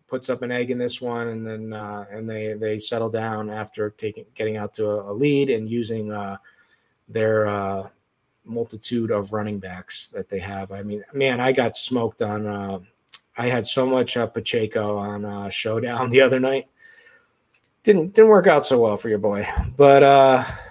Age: 30-49